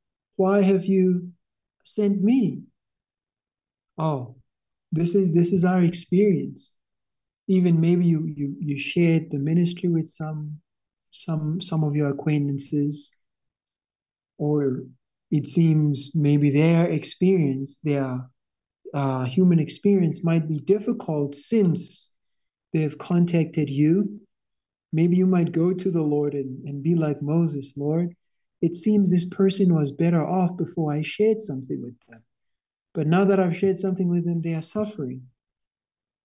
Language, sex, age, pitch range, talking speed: English, male, 50-69, 140-180 Hz, 135 wpm